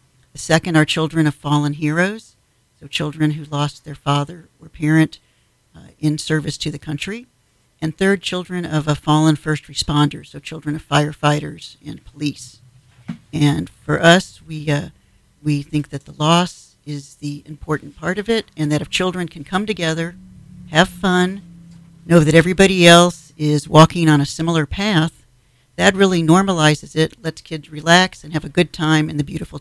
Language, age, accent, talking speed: English, 50-69, American, 170 wpm